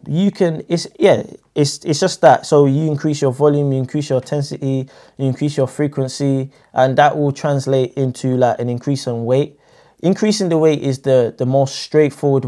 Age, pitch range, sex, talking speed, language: 20-39, 125-145 Hz, male, 190 wpm, English